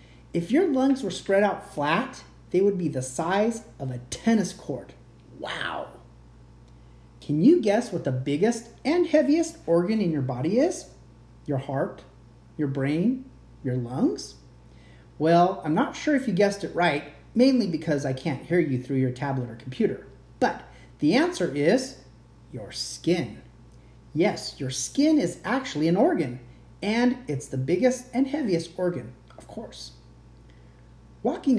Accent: American